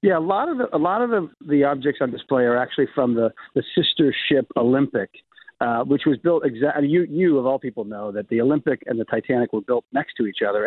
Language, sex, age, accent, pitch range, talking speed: English, male, 40-59, American, 115-145 Hz, 250 wpm